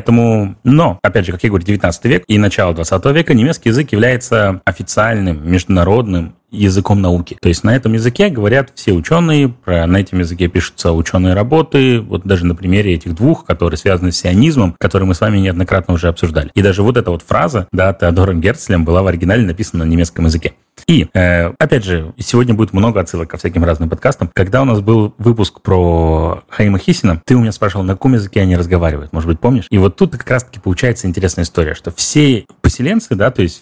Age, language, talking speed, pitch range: 30-49, Russian, 200 wpm, 90-115 Hz